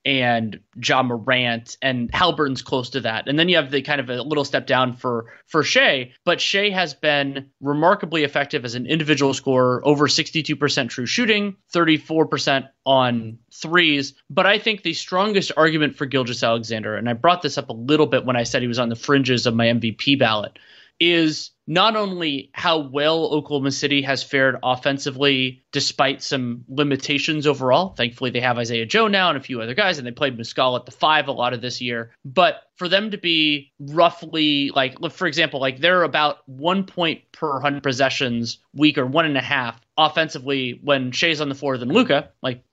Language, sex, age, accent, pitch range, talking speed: English, male, 30-49, American, 130-160 Hz, 195 wpm